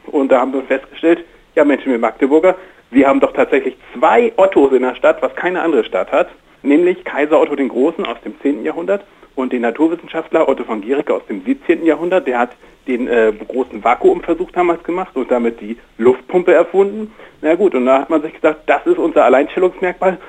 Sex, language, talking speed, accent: male, German, 200 wpm, German